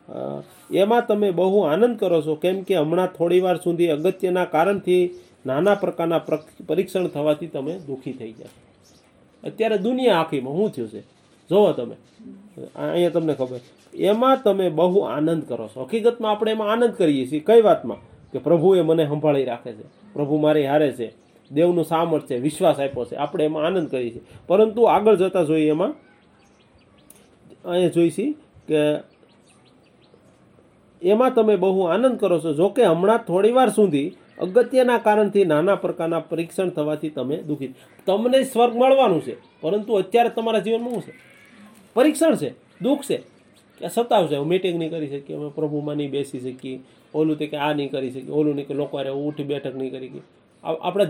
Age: 40-59